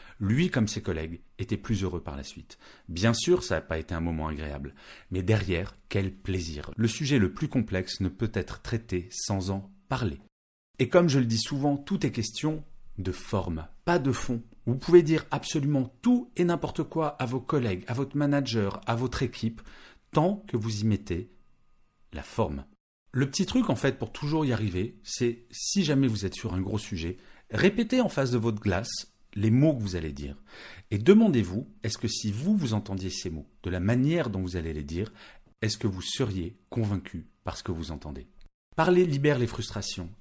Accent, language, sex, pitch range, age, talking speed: French, French, male, 95-135 Hz, 40-59, 200 wpm